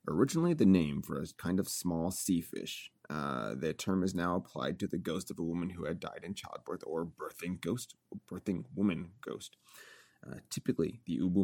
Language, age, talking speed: English, 30-49, 200 wpm